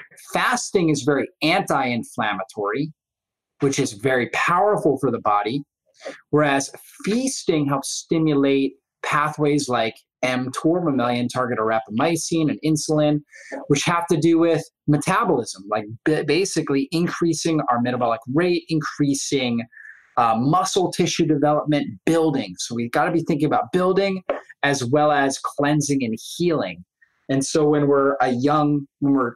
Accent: American